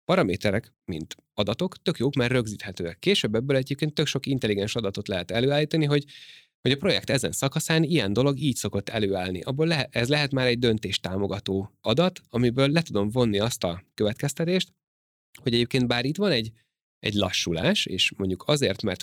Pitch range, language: 100-135 Hz, Hungarian